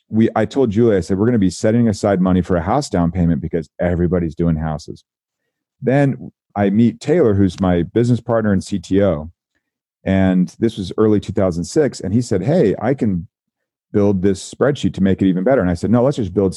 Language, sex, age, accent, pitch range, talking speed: English, male, 40-59, American, 90-110 Hz, 210 wpm